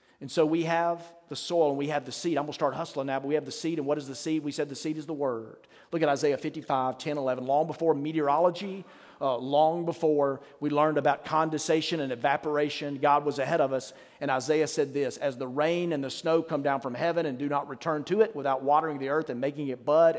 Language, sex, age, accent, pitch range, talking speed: English, male, 40-59, American, 135-165 Hz, 255 wpm